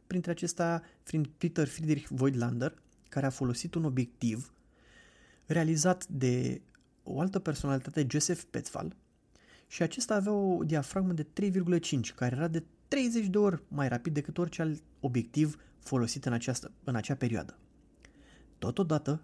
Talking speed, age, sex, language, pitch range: 135 wpm, 20-39, male, Romanian, 130-180 Hz